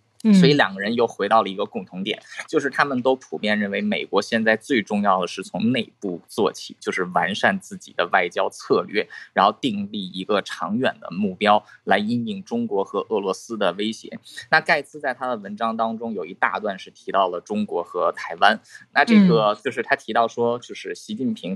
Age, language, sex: 20-39, Chinese, male